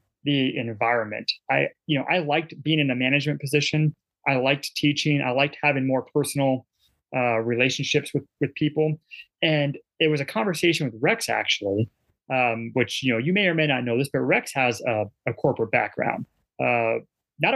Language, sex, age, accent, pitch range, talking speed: English, male, 30-49, American, 125-155 Hz, 180 wpm